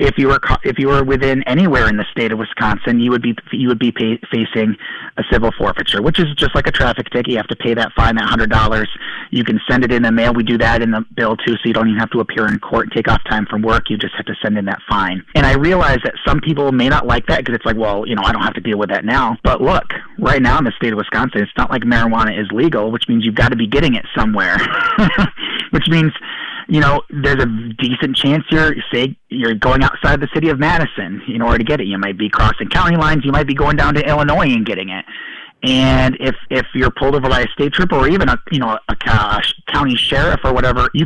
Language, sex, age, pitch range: English, male, 30-49, 115-145 Hz